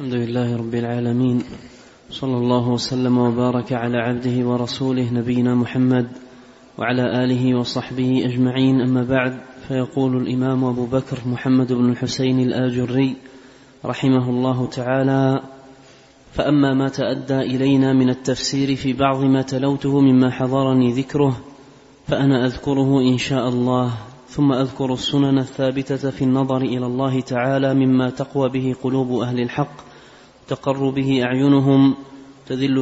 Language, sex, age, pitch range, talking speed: Arabic, male, 30-49, 125-140 Hz, 125 wpm